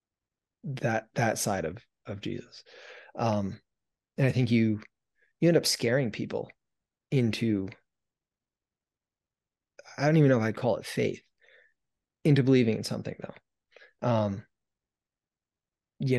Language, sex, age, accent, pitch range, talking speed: English, male, 20-39, American, 110-135 Hz, 120 wpm